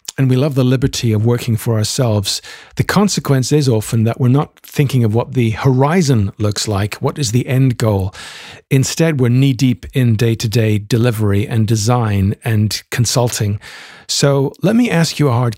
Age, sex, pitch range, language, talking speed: 50-69, male, 115-140 Hz, English, 175 wpm